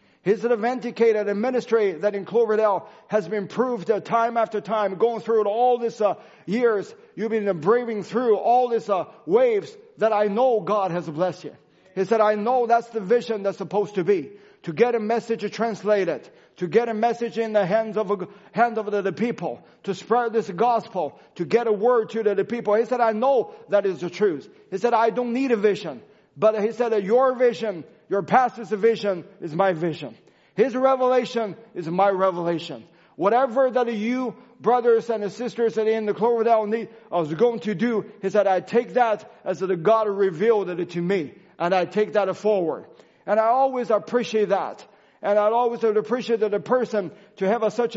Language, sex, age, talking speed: English, male, 40-59, 200 wpm